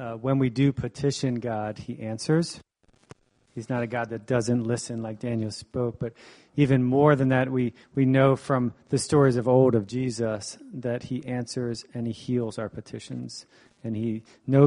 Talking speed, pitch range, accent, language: 180 wpm, 110-125 Hz, American, English